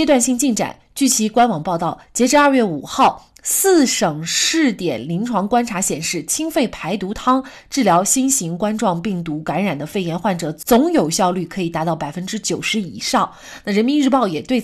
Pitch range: 175-245 Hz